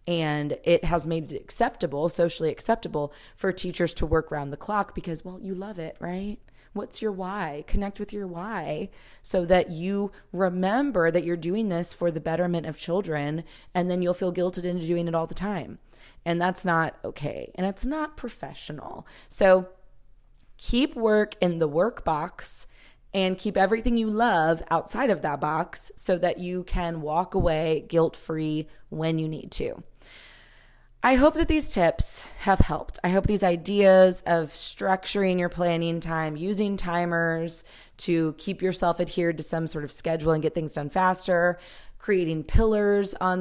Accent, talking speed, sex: American, 170 wpm, female